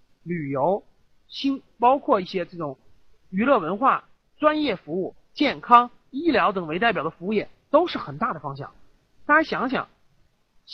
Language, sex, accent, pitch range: Chinese, male, native, 185-265 Hz